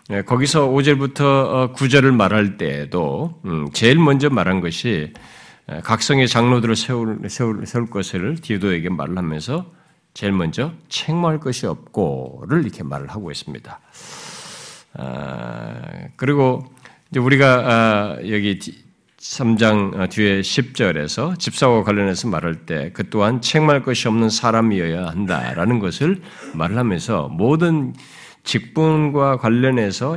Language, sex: Korean, male